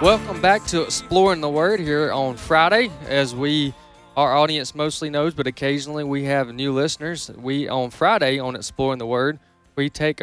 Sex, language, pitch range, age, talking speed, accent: male, English, 125-145 Hz, 20-39, 175 wpm, American